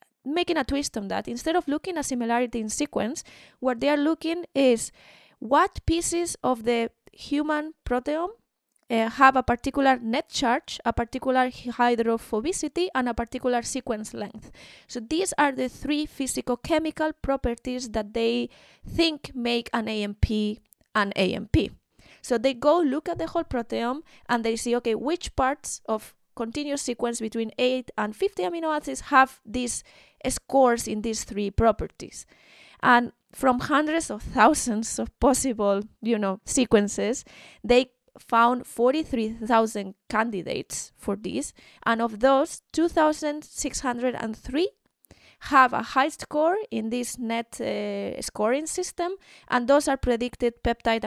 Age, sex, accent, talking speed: 20-39, female, Spanish, 135 wpm